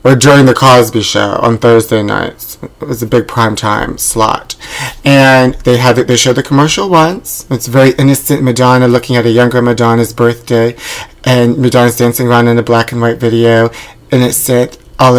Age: 30-49